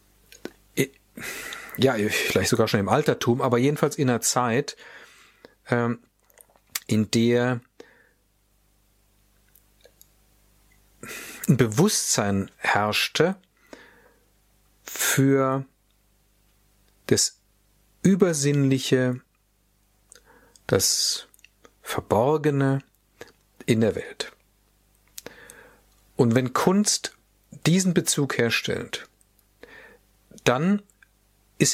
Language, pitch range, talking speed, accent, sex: German, 105-155 Hz, 60 wpm, German, male